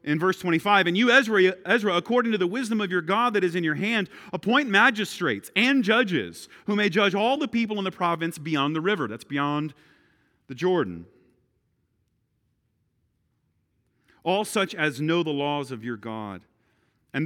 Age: 40-59